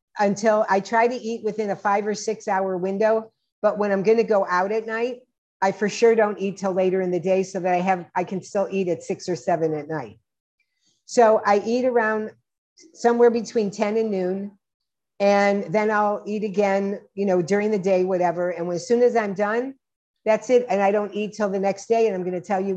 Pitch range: 185-225 Hz